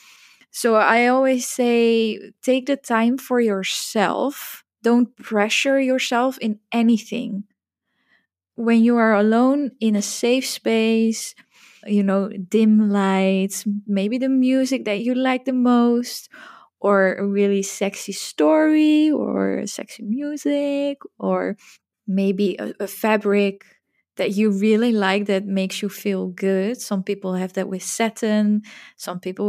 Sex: female